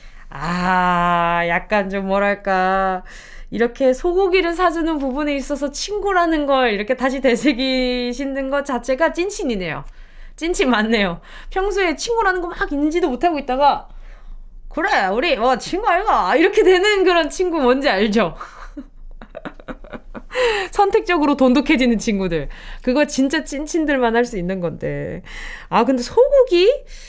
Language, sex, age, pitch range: Korean, female, 20-39, 205-330 Hz